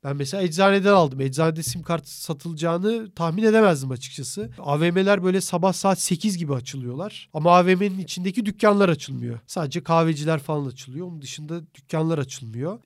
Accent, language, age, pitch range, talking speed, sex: native, Turkish, 40-59, 140-180 Hz, 145 wpm, male